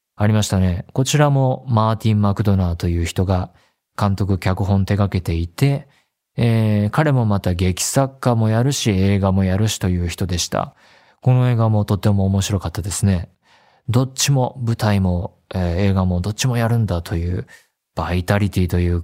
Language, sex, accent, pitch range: Japanese, male, native, 95-125 Hz